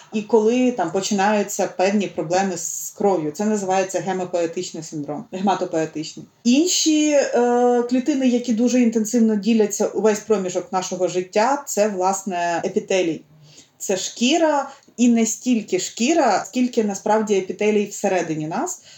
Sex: female